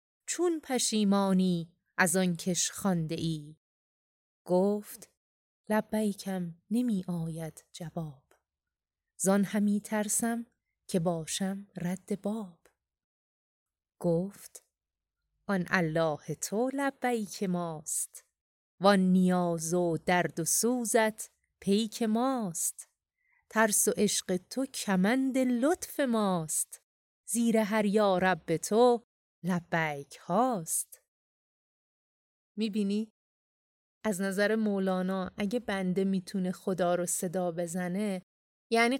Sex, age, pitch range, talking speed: female, 30-49, 175-225 Hz, 90 wpm